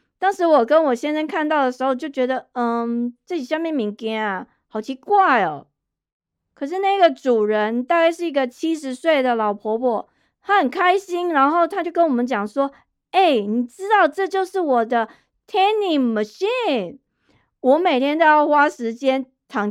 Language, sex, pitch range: Chinese, female, 235-315 Hz